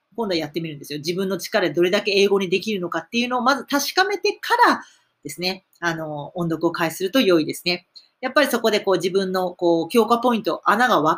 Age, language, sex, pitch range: 40-59, Japanese, female, 180-285 Hz